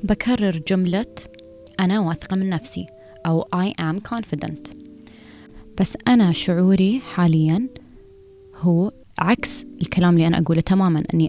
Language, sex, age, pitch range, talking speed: Arabic, female, 20-39, 165-195 Hz, 115 wpm